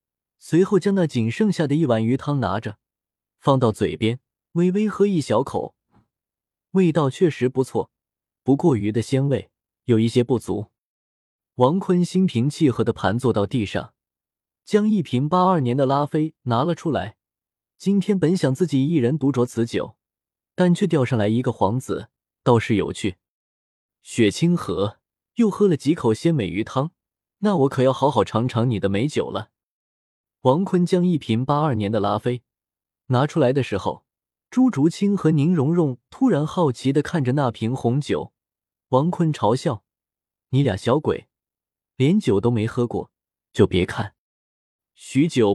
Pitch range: 115-165 Hz